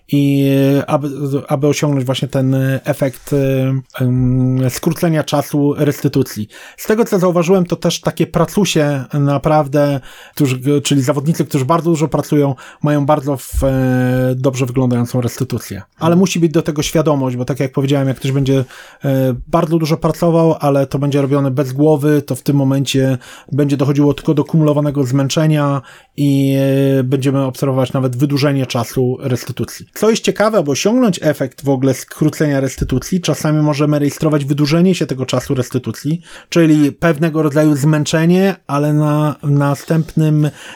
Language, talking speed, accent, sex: Polish, 140 wpm, native, male